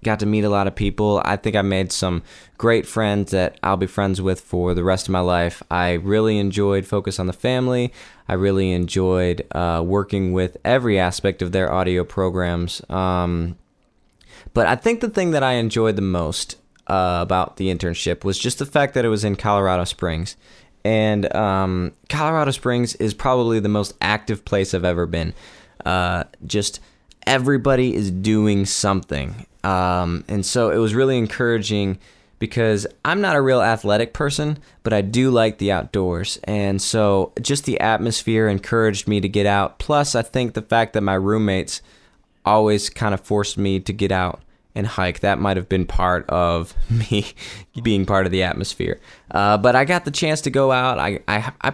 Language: English